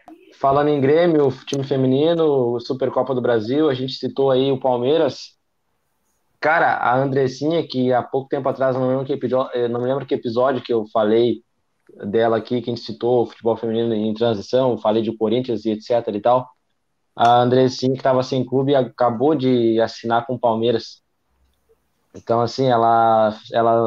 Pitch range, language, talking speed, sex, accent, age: 115-140 Hz, Portuguese, 170 wpm, male, Brazilian, 20-39